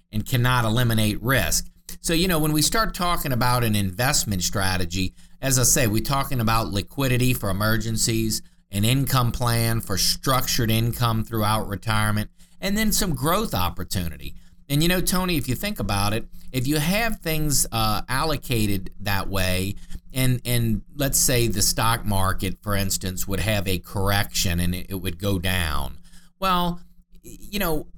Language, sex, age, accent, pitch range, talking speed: English, male, 50-69, American, 100-155 Hz, 160 wpm